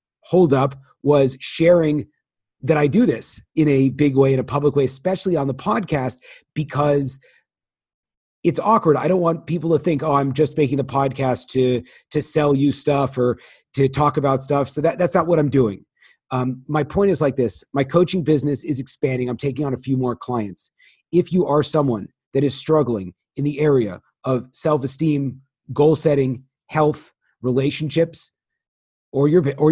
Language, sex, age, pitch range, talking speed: English, male, 30-49, 135-155 Hz, 180 wpm